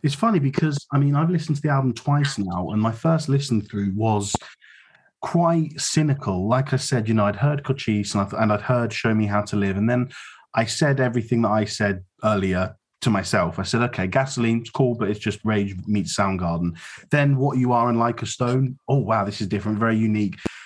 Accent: British